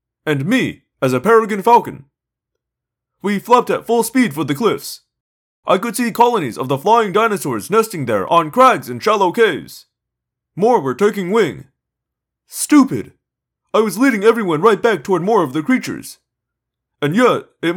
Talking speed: 160 wpm